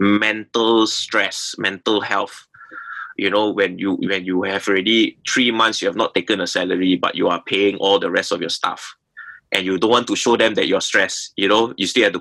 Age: 20-39